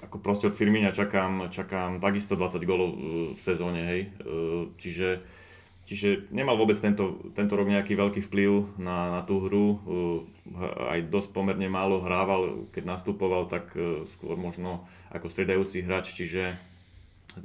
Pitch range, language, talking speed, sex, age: 90-100 Hz, Slovak, 140 wpm, male, 30-49